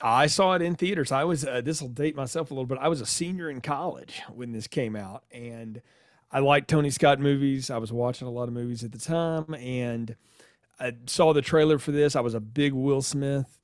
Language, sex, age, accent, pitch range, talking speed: English, male, 40-59, American, 115-145 Hz, 240 wpm